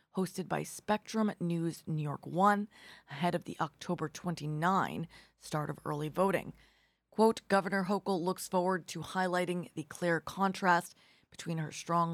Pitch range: 155-185 Hz